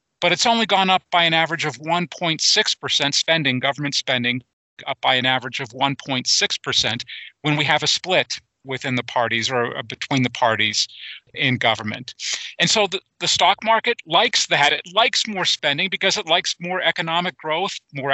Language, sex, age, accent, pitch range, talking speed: English, male, 40-59, American, 125-165 Hz, 170 wpm